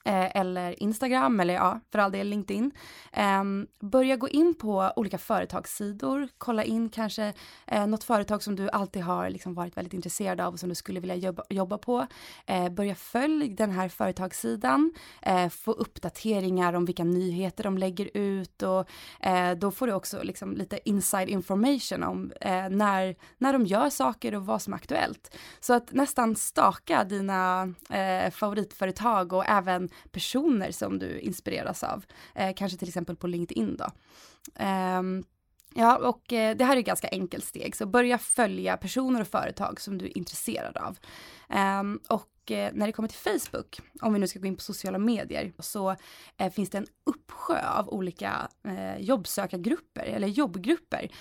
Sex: female